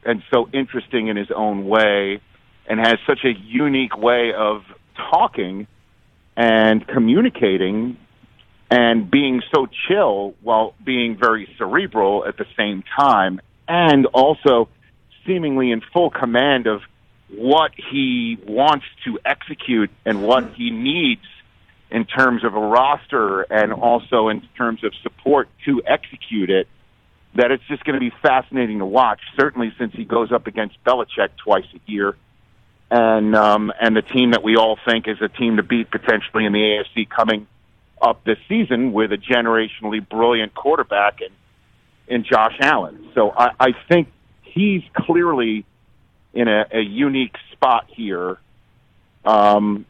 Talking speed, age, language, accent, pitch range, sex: 145 wpm, 40-59, English, American, 105-130 Hz, male